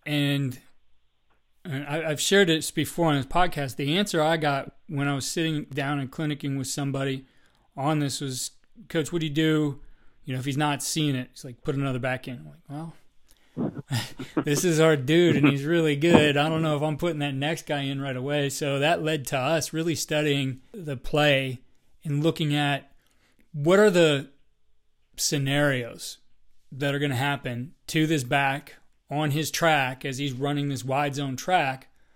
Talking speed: 190 wpm